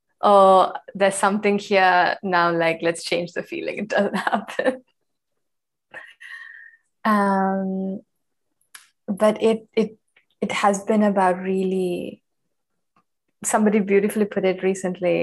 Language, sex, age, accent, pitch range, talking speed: English, female, 20-39, Indian, 185-215 Hz, 105 wpm